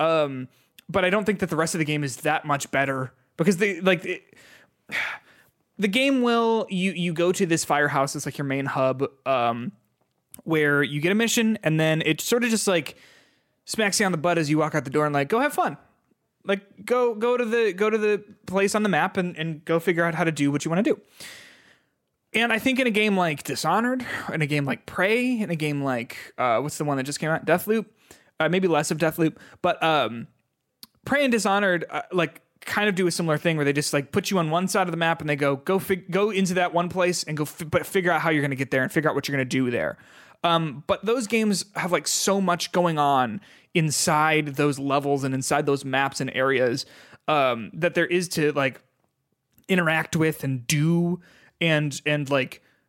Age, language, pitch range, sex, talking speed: 20-39, English, 145-195 Hz, male, 235 wpm